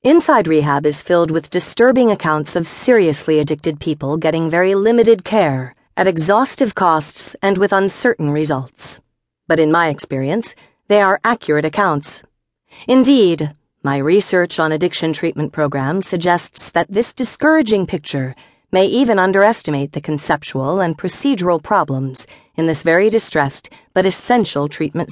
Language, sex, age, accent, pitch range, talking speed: English, female, 50-69, American, 145-215 Hz, 135 wpm